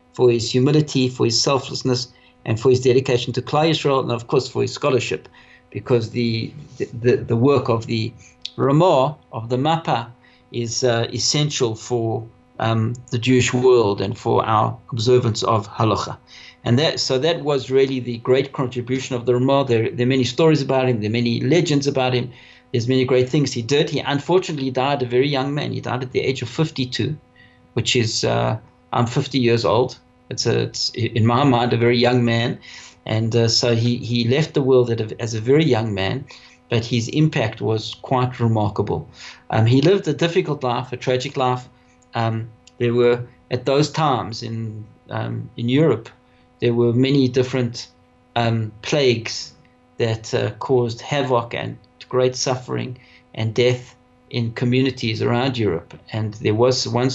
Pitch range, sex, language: 115-130 Hz, male, English